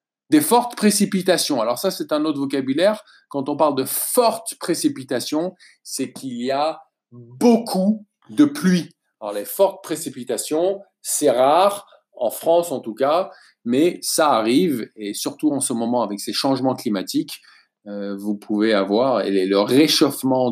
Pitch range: 125-200 Hz